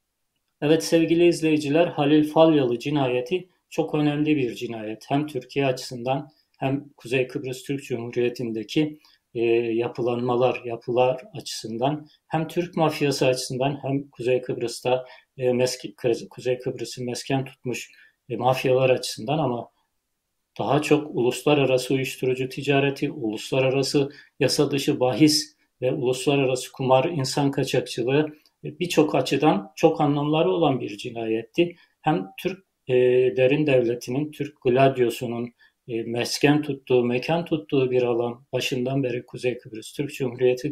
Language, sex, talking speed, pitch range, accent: Turkish, male, 120 wpm, 125-150 Hz, native